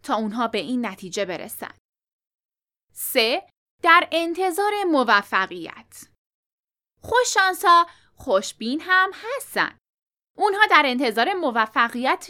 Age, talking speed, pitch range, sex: 10-29, 95 wpm, 235-360 Hz, female